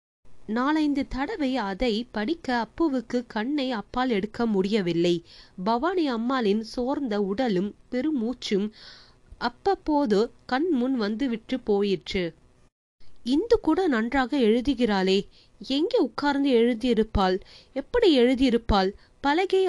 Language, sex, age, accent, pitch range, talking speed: Tamil, female, 20-39, native, 215-280 Hz, 90 wpm